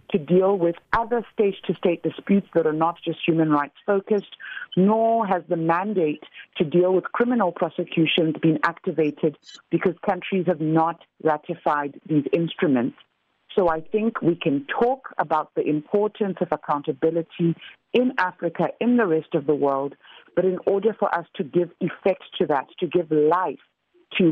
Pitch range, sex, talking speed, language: 150-185 Hz, female, 160 wpm, English